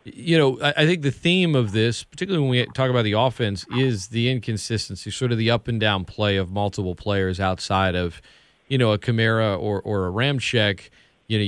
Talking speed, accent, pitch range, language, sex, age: 200 wpm, American, 110-155 Hz, English, male, 40-59